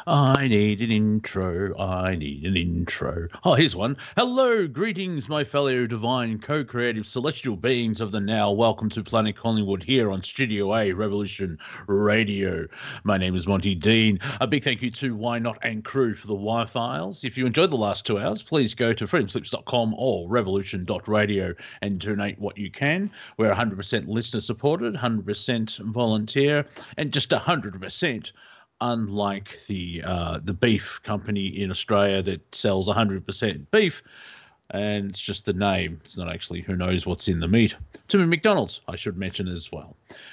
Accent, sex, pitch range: Australian, male, 100-125 Hz